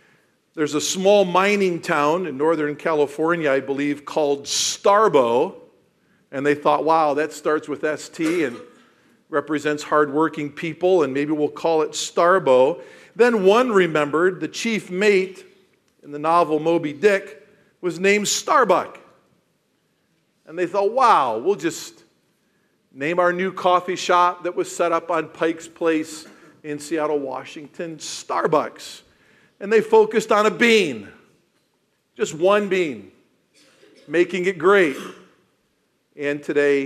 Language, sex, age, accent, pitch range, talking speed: English, male, 50-69, American, 145-190 Hz, 130 wpm